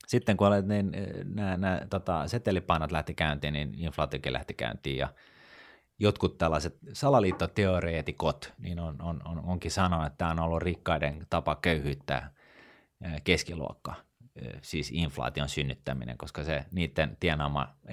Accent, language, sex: native, Finnish, male